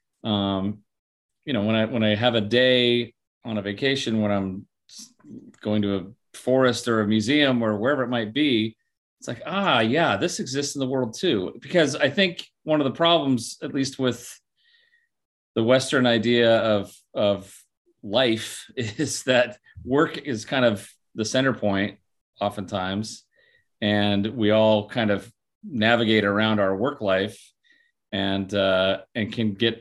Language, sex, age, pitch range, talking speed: English, male, 30-49, 105-130 Hz, 155 wpm